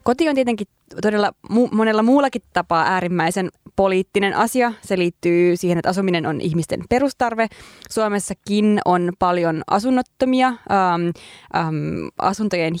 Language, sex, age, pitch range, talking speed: Finnish, female, 20-39, 175-220 Hz, 110 wpm